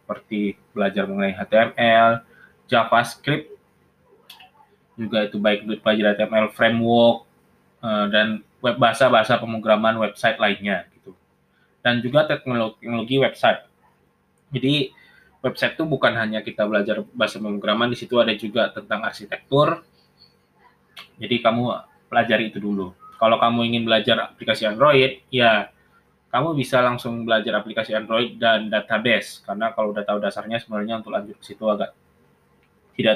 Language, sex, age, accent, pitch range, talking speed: Indonesian, male, 20-39, native, 105-120 Hz, 125 wpm